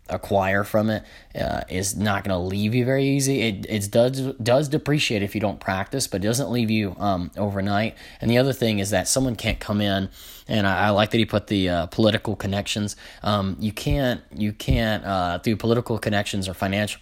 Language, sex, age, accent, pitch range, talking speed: English, male, 20-39, American, 90-105 Hz, 210 wpm